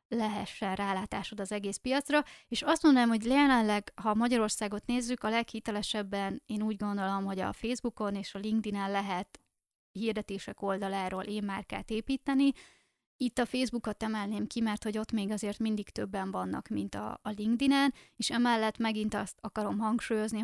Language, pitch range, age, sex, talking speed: Hungarian, 205-235 Hz, 20-39, female, 155 wpm